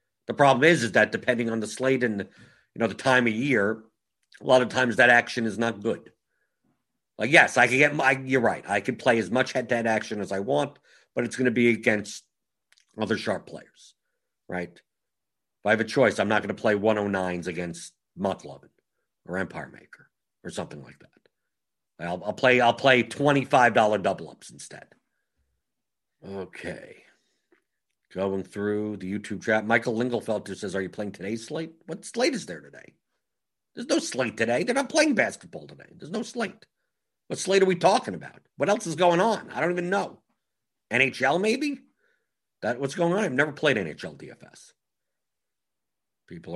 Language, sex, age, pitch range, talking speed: English, male, 50-69, 100-145 Hz, 185 wpm